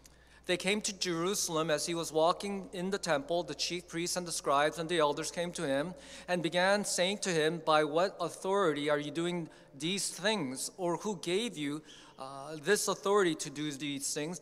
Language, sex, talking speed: English, male, 195 wpm